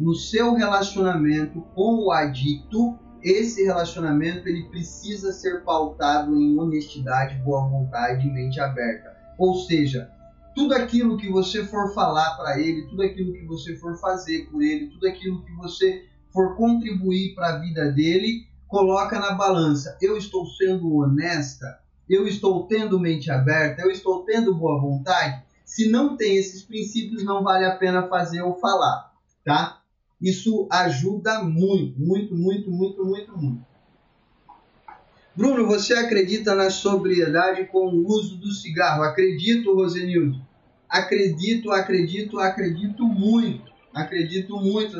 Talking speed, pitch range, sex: 135 wpm, 160-200 Hz, male